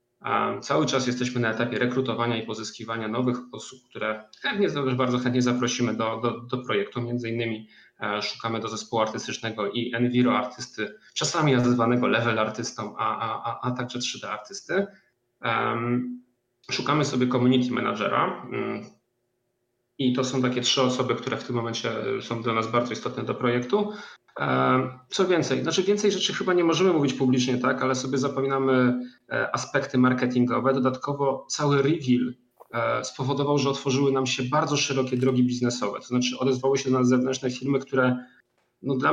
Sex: male